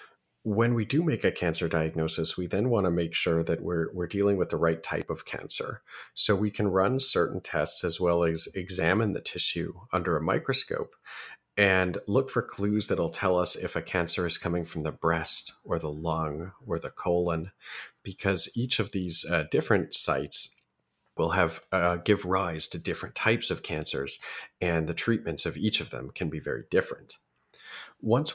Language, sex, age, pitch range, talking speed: English, male, 40-59, 80-100 Hz, 185 wpm